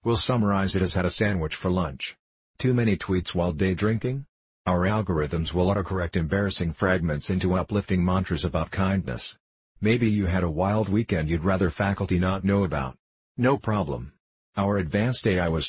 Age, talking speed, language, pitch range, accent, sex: 50-69, 170 wpm, English, 90-105 Hz, American, male